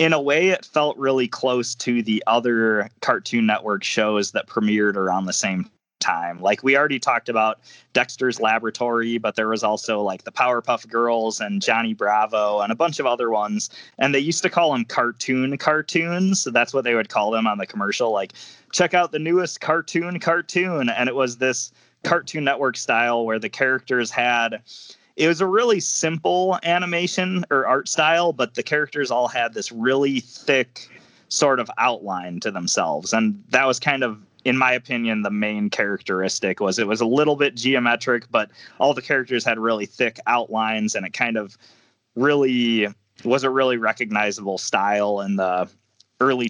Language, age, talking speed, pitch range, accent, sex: English, 20-39, 180 wpm, 110-145 Hz, American, male